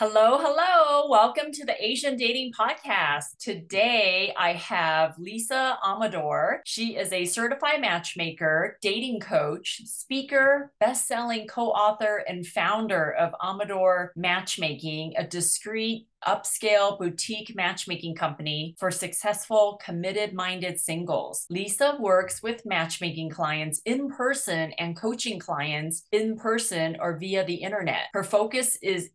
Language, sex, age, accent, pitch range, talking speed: English, female, 30-49, American, 170-220 Hz, 120 wpm